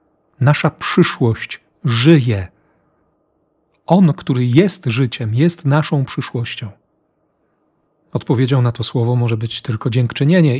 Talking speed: 100 wpm